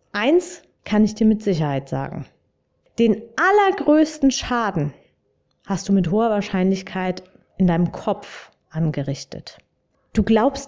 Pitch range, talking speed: 180-235 Hz, 120 wpm